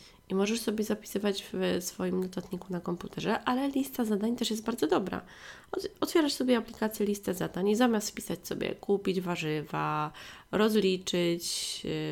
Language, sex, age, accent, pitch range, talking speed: Polish, female, 20-39, native, 180-235 Hz, 140 wpm